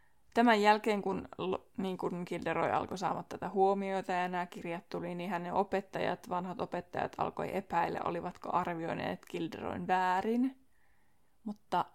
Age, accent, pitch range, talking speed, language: 20-39, native, 180-235 Hz, 130 wpm, Finnish